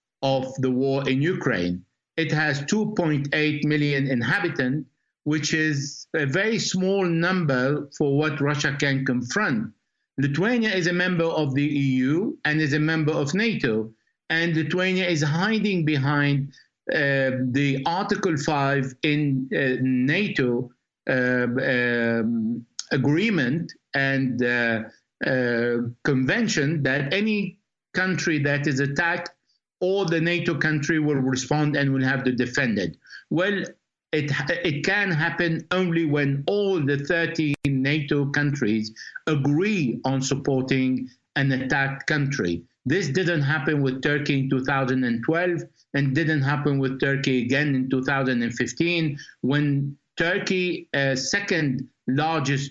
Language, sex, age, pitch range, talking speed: English, male, 60-79, 130-160 Hz, 125 wpm